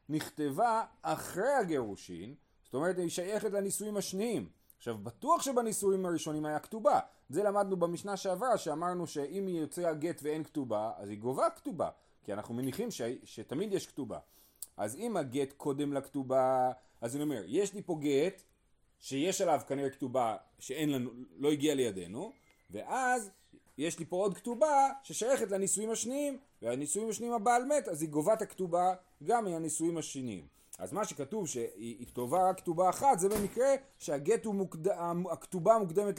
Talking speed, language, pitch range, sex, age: 145 wpm, Hebrew, 135-205 Hz, male, 30-49